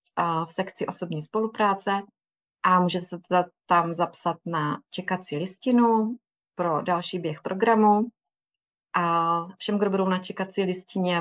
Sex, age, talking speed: female, 20-39, 130 wpm